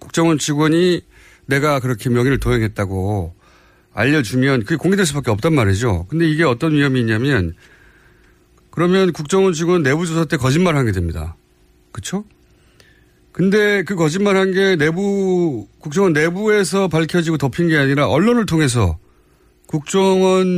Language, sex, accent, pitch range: Korean, male, native, 105-170 Hz